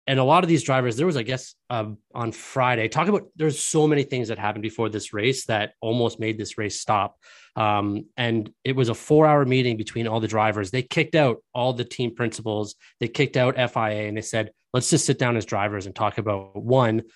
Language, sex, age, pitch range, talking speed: English, male, 20-39, 110-140 Hz, 225 wpm